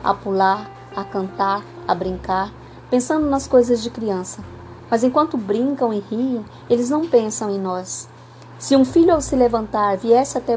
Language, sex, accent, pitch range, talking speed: Portuguese, female, Brazilian, 200-245 Hz, 165 wpm